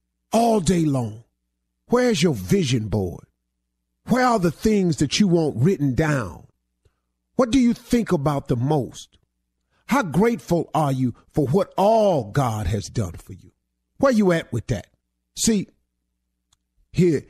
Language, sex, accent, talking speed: English, male, American, 145 wpm